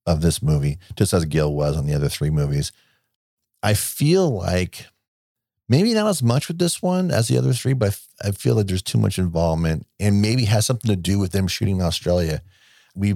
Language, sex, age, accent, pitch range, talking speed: English, male, 50-69, American, 85-110 Hz, 210 wpm